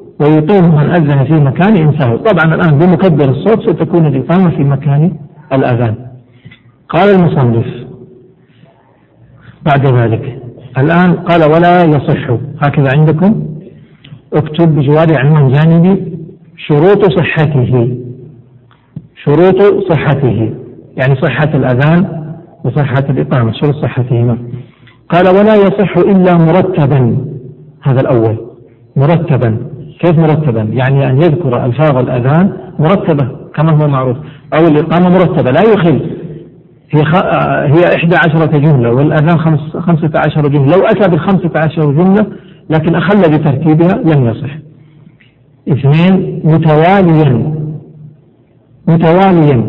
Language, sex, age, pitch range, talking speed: Arabic, male, 60-79, 135-170 Hz, 105 wpm